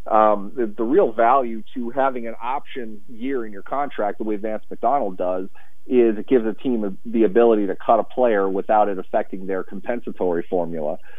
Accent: American